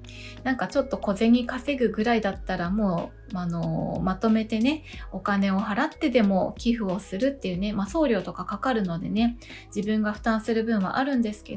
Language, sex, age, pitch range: Japanese, female, 20-39, 195-255 Hz